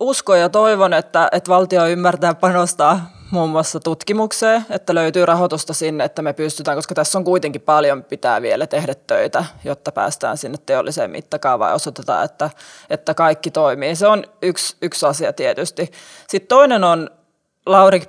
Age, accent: 20-39, native